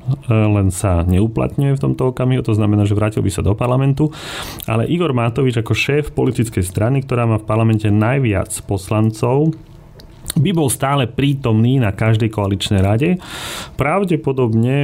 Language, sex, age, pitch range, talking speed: Slovak, male, 30-49, 100-120 Hz, 145 wpm